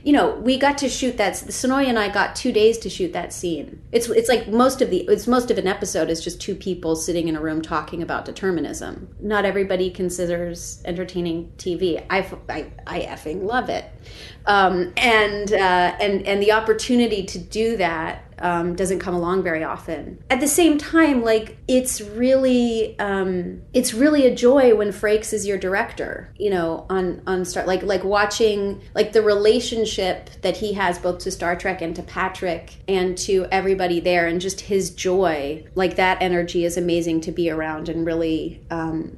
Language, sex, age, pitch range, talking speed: English, female, 30-49, 175-225 Hz, 190 wpm